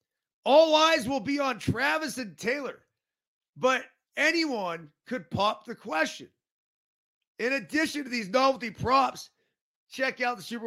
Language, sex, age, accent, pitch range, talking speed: English, male, 30-49, American, 175-265 Hz, 135 wpm